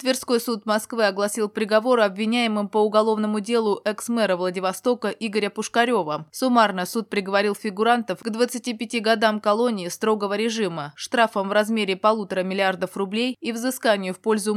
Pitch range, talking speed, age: 195-235 Hz, 135 wpm, 20-39